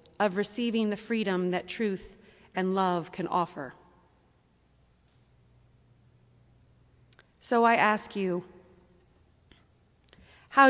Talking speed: 85 wpm